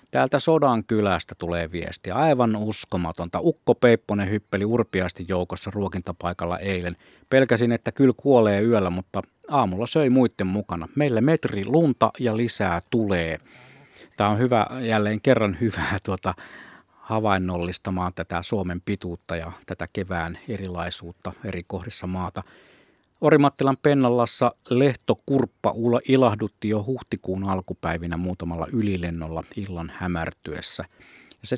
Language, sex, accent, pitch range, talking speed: Finnish, male, native, 90-115 Hz, 115 wpm